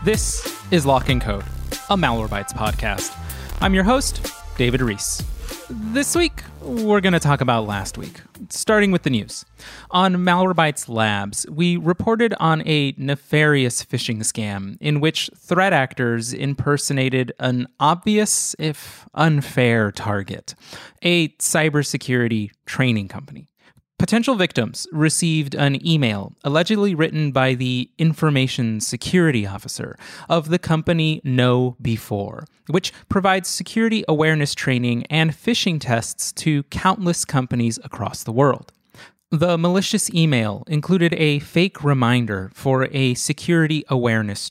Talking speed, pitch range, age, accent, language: 125 wpm, 120-170 Hz, 30-49, American, English